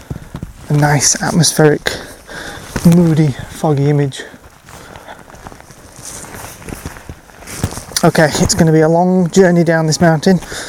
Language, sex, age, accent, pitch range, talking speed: English, male, 20-39, British, 145-170 Hz, 85 wpm